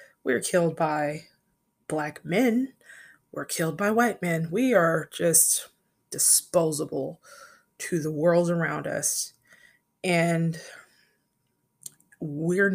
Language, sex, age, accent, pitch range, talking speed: English, female, 20-39, American, 165-200 Hz, 100 wpm